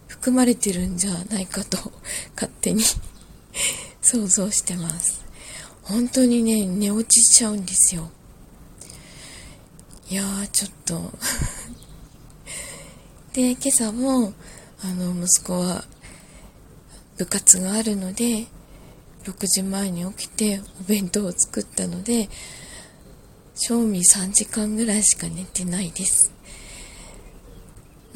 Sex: female